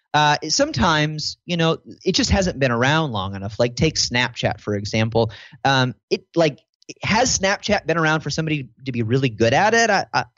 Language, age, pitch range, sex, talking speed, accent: English, 30-49, 115-155 Hz, male, 185 wpm, American